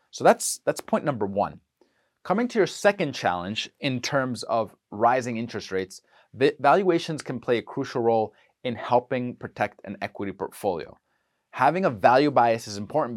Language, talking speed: English, 160 wpm